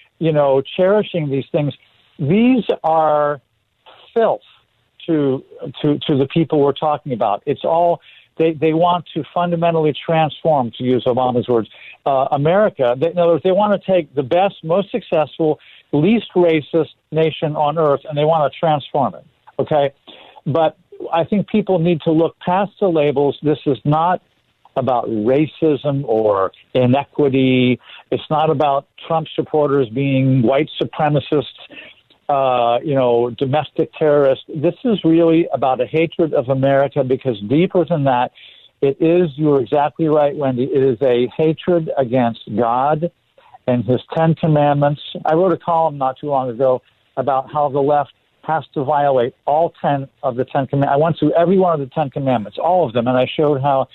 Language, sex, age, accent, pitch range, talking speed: English, male, 60-79, American, 135-165 Hz, 160 wpm